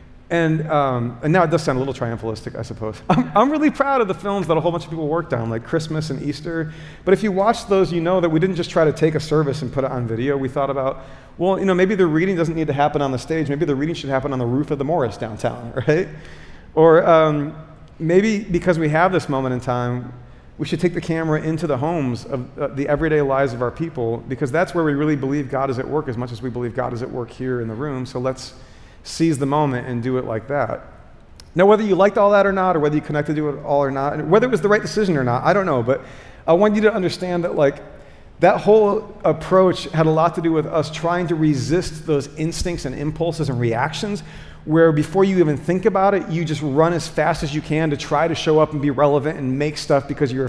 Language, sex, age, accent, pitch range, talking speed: English, male, 40-59, American, 135-175 Hz, 265 wpm